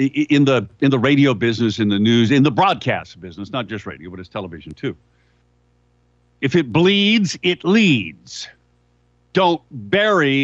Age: 50-69